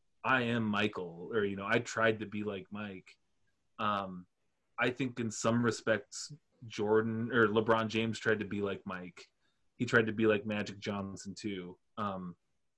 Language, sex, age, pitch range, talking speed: English, male, 30-49, 110-140 Hz, 170 wpm